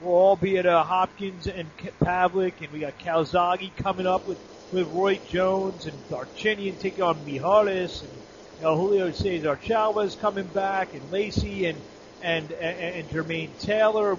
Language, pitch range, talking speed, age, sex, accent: English, 175-215 Hz, 165 wpm, 40-59, male, American